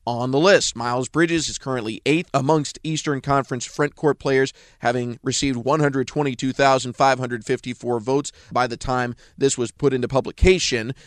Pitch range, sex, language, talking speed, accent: 125-155 Hz, male, English, 135 wpm, American